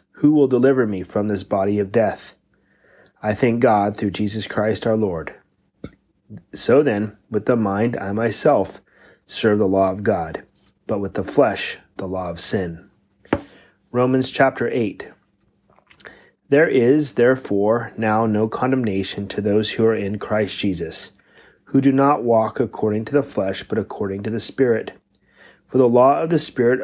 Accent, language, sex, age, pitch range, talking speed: American, English, male, 30-49, 105-125 Hz, 160 wpm